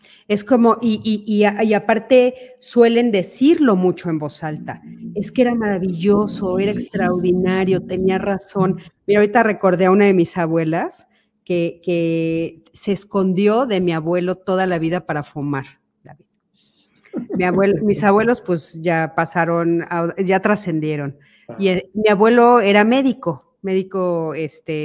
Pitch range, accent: 175-215 Hz, Mexican